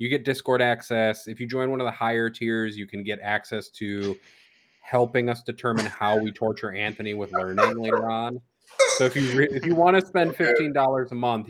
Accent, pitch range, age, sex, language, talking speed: American, 105-125 Hz, 30-49, male, English, 210 wpm